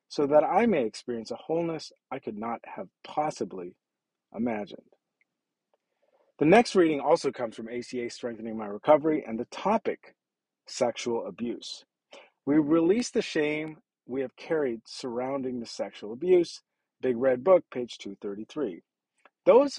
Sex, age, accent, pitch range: male, 40-59, American, 125-185 Hz